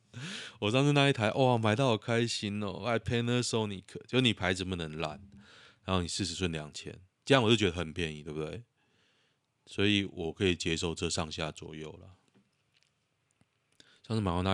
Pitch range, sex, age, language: 80-110 Hz, male, 20-39, Chinese